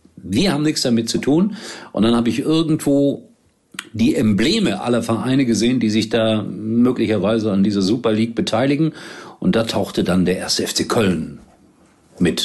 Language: German